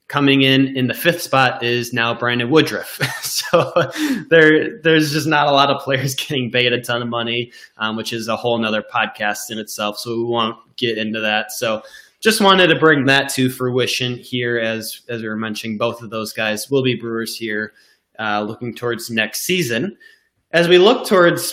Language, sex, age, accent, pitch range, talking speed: English, male, 20-39, American, 120-160 Hz, 200 wpm